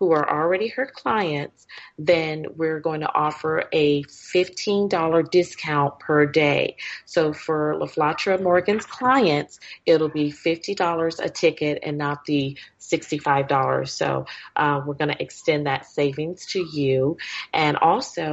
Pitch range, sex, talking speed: 150-175 Hz, female, 135 wpm